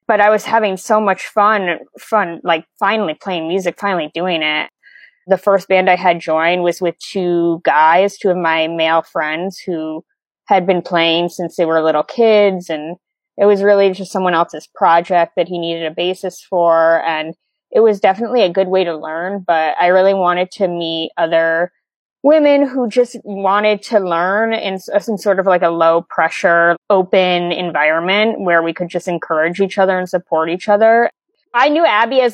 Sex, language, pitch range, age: female, English, 170-210 Hz, 20-39